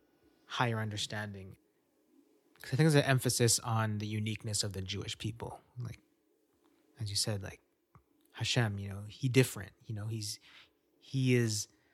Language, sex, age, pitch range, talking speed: English, male, 20-39, 105-125 Hz, 150 wpm